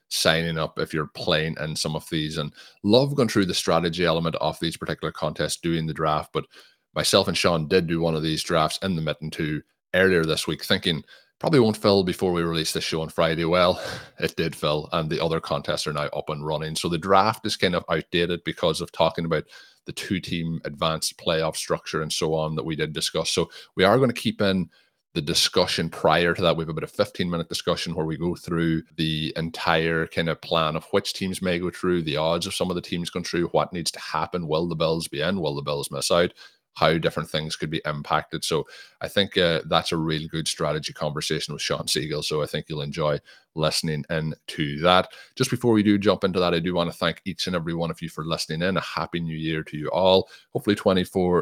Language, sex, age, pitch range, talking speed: English, male, 30-49, 80-90 Hz, 235 wpm